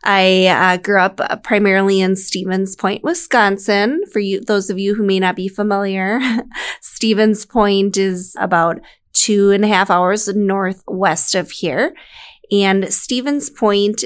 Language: English